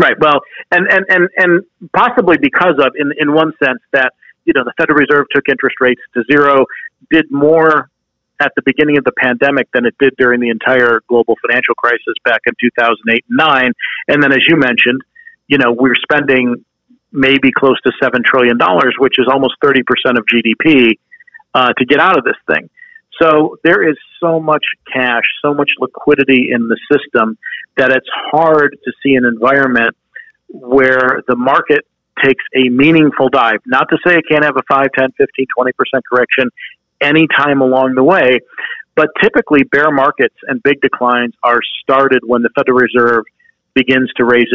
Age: 50-69